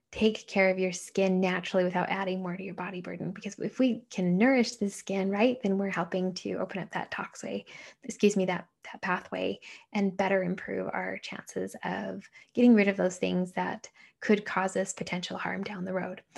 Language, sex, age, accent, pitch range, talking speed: English, female, 10-29, American, 180-215 Hz, 200 wpm